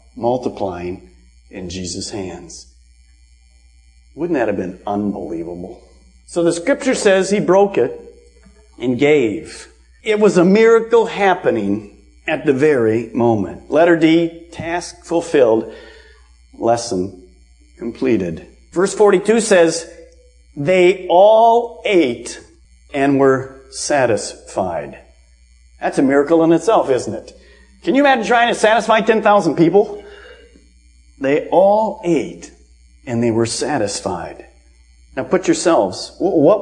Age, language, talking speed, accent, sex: 50-69, English, 110 wpm, American, male